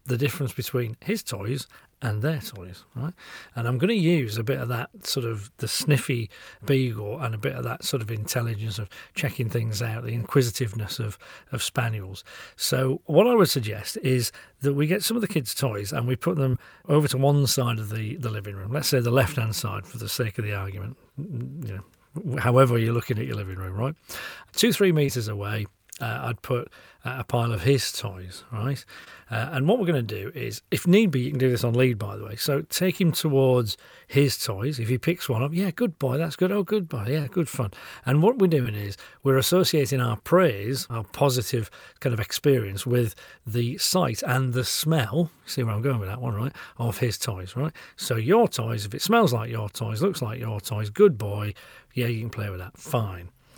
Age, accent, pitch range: 40-59, British, 115-145 Hz